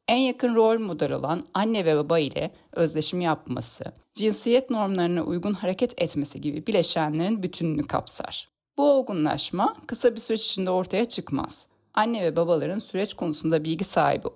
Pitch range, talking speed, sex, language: 155-215 Hz, 145 wpm, female, Turkish